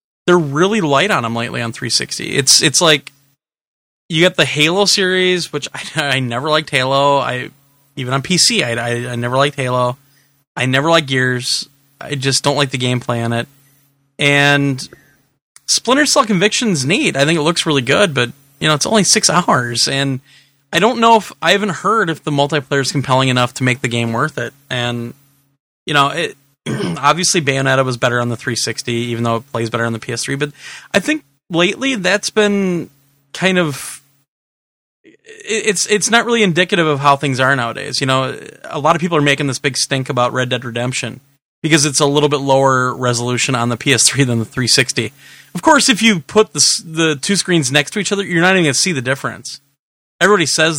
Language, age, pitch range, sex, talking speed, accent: English, 20-39, 130-165 Hz, male, 200 wpm, American